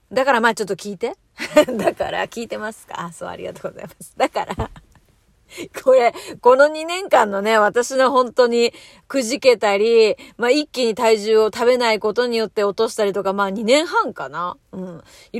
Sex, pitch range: female, 220-365 Hz